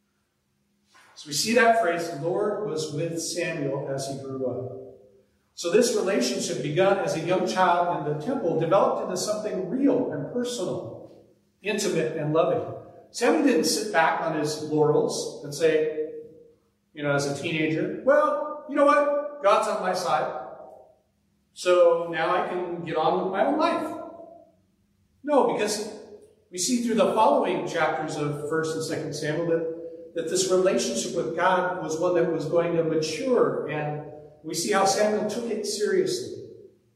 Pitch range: 145-200 Hz